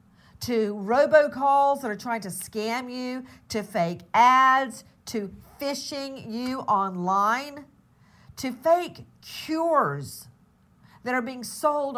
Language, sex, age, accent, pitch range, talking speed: English, female, 50-69, American, 185-255 Hz, 110 wpm